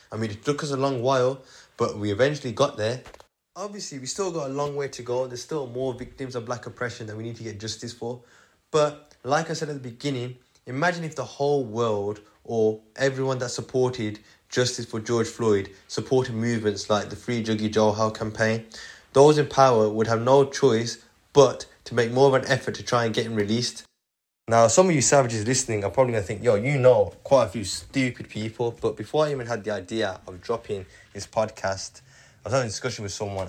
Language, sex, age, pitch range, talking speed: English, male, 20-39, 105-130 Hz, 215 wpm